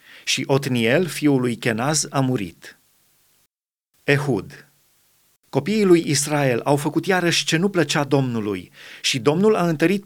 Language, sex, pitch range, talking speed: Romanian, male, 135-165 Hz, 130 wpm